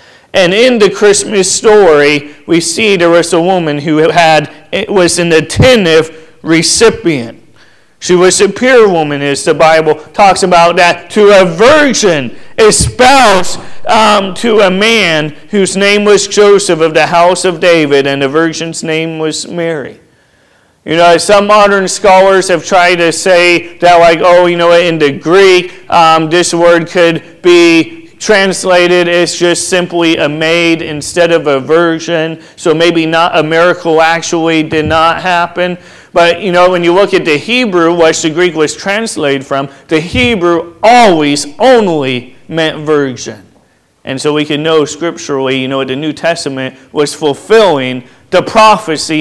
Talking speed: 155 wpm